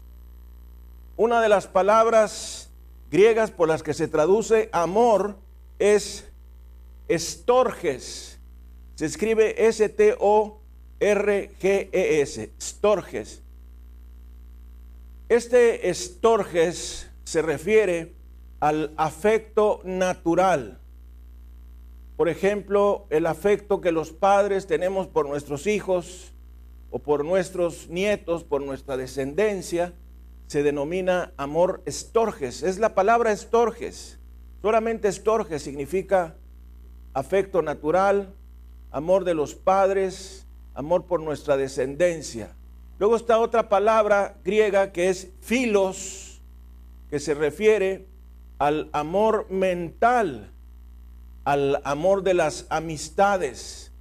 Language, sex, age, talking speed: Spanish, male, 50-69, 90 wpm